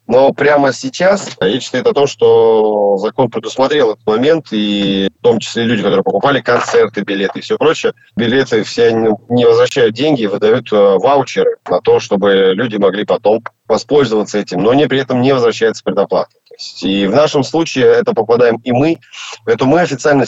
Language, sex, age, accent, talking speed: Russian, male, 30-49, native, 175 wpm